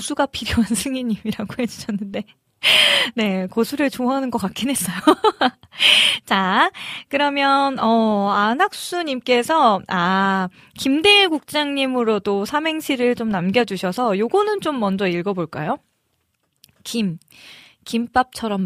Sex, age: female, 20-39